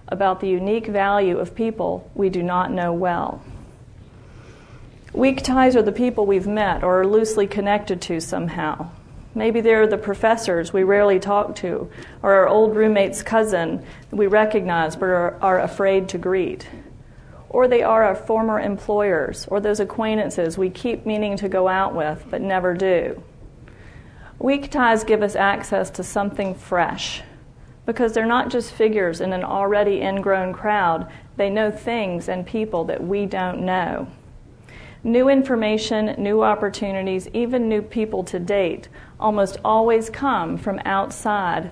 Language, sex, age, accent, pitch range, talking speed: English, female, 40-59, American, 185-220 Hz, 150 wpm